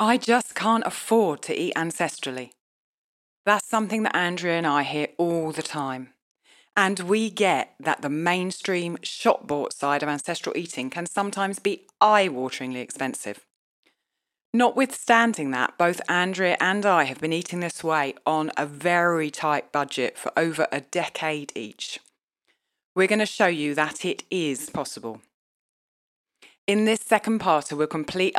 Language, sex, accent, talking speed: English, female, British, 145 wpm